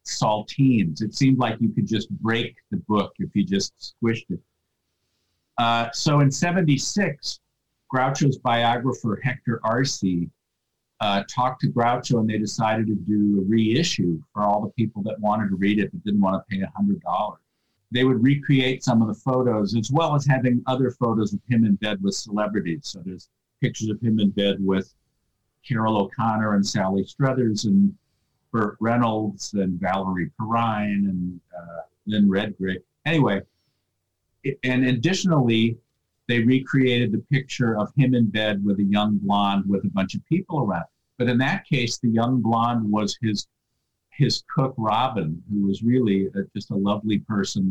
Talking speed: 165 wpm